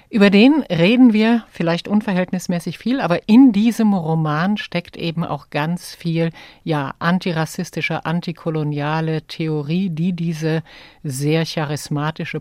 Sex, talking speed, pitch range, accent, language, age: female, 115 wpm, 150-185 Hz, German, German, 50-69